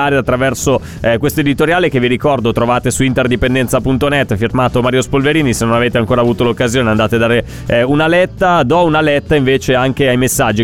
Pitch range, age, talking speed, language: 115-145 Hz, 30-49, 180 wpm, Italian